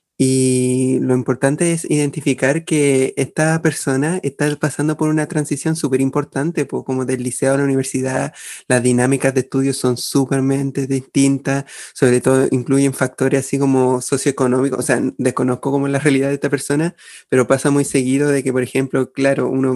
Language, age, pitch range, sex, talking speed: Spanish, 20-39, 130-150 Hz, male, 170 wpm